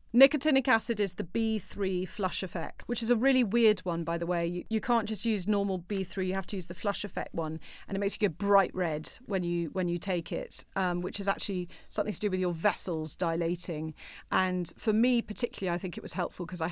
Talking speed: 235 wpm